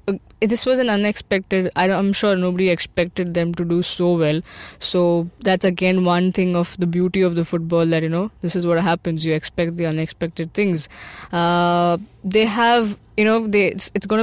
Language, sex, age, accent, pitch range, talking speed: English, female, 20-39, Indian, 170-195 Hz, 185 wpm